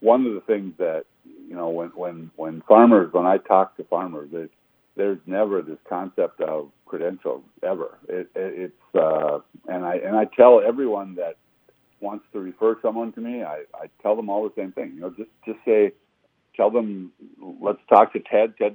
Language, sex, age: English, male, 60-79